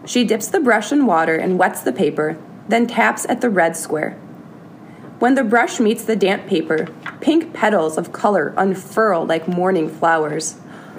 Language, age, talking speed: English, 20-39, 170 wpm